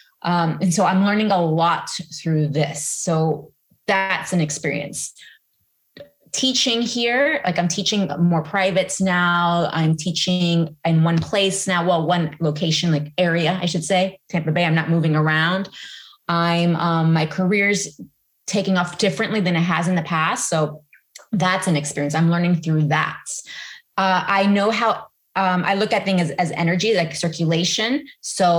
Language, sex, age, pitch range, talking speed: English, female, 20-39, 160-195 Hz, 160 wpm